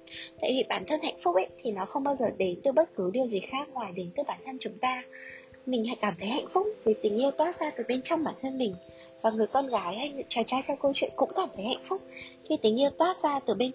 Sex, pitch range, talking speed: female, 210-295 Hz, 290 wpm